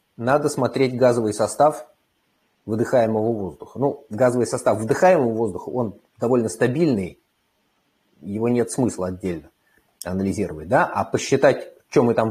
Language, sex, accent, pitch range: Russian, male, native, 110-140 Hz